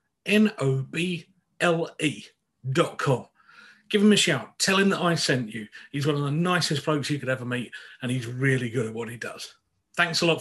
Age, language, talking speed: 40-59, English, 190 wpm